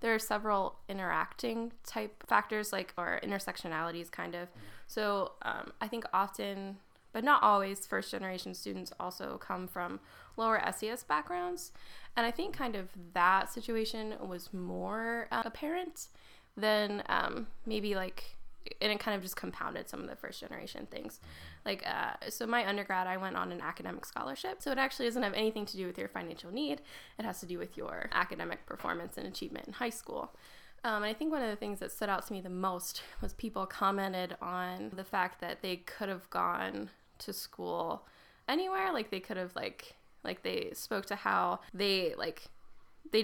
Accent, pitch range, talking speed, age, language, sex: American, 185-235 Hz, 180 wpm, 10-29, English, female